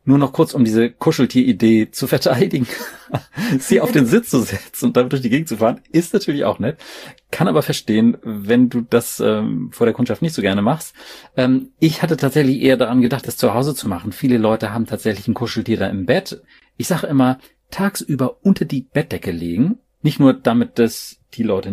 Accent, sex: German, male